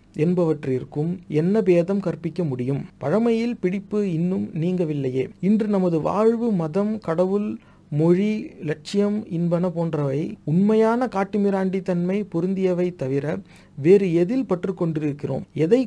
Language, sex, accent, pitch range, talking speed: Tamil, male, native, 160-195 Hz, 100 wpm